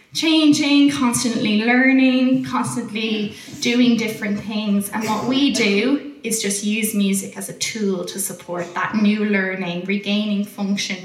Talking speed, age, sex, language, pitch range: 135 wpm, 10-29, female, English, 205-250 Hz